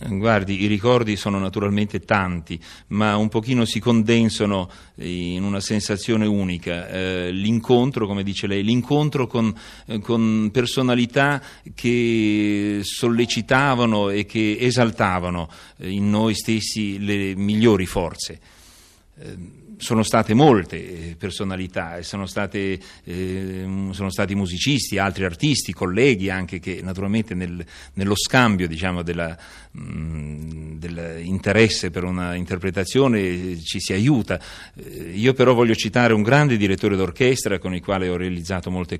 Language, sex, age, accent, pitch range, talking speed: Italian, male, 40-59, native, 90-110 Hz, 115 wpm